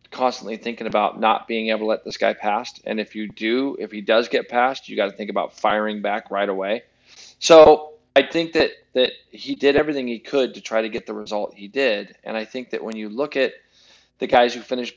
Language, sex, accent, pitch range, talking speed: English, male, American, 110-135 Hz, 235 wpm